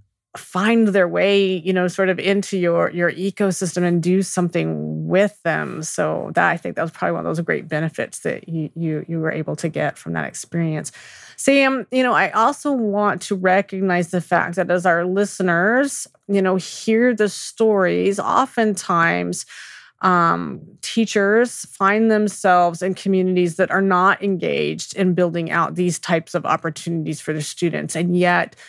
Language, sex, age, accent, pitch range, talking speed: English, female, 30-49, American, 165-195 Hz, 170 wpm